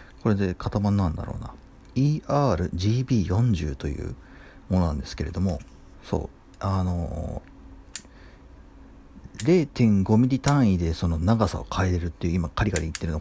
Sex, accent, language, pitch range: male, native, Japanese, 85-125 Hz